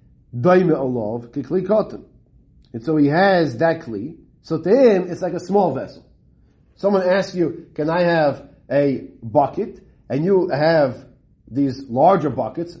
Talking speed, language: 130 wpm, English